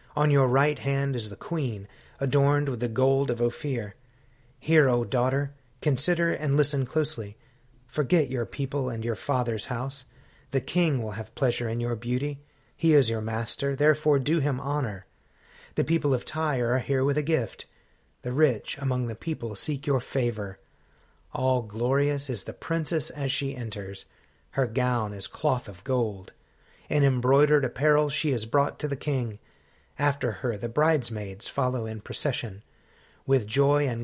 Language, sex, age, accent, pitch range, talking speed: English, male, 30-49, American, 115-145 Hz, 160 wpm